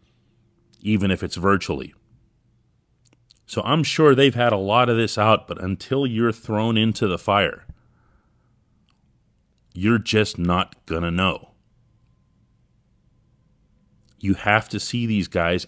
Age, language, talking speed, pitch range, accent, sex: 40-59, English, 125 wpm, 100-135 Hz, American, male